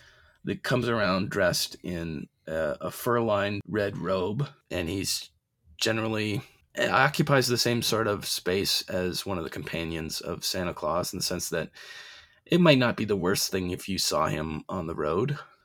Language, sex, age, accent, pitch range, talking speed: English, male, 30-49, American, 95-135 Hz, 175 wpm